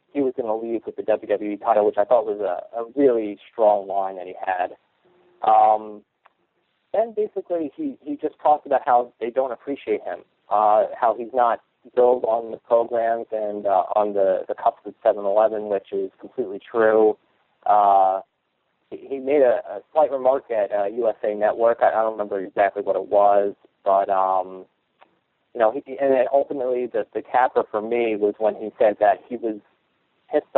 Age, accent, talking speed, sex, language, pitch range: 40-59, American, 185 wpm, male, English, 105-120 Hz